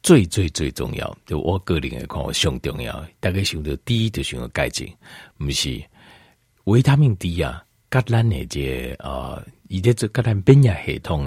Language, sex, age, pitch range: Chinese, male, 50-69, 75-115 Hz